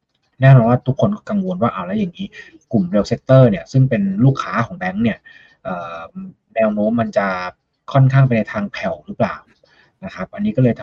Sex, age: male, 20-39